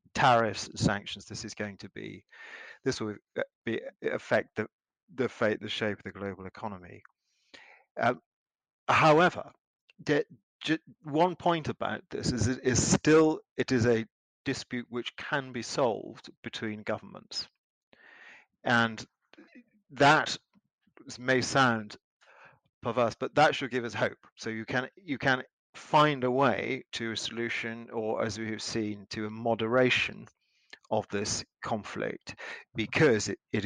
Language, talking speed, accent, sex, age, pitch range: English, 140 wpm, British, male, 40-59, 105-130 Hz